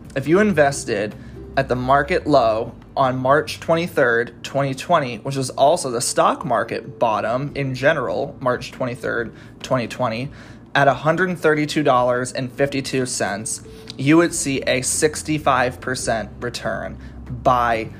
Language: English